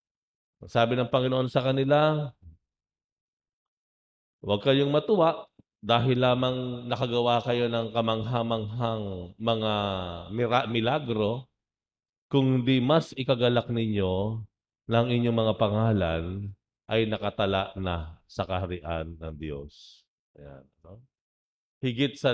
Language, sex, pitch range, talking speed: English, male, 100-130 Hz, 95 wpm